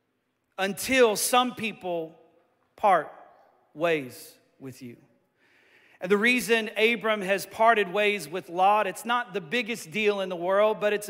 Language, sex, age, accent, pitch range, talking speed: English, male, 40-59, American, 170-215 Hz, 140 wpm